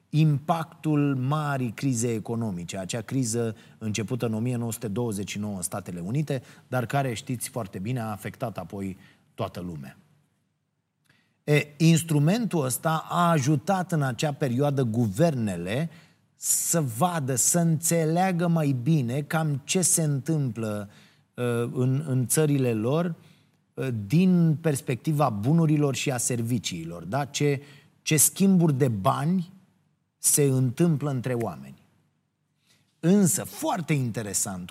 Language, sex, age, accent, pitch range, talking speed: Romanian, male, 30-49, native, 115-160 Hz, 105 wpm